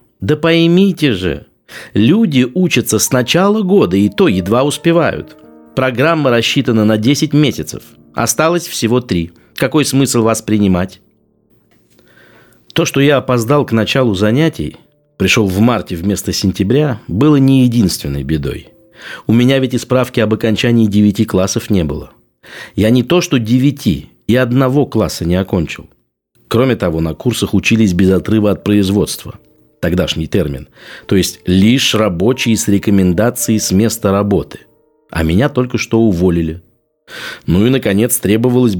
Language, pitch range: Russian, 95-130 Hz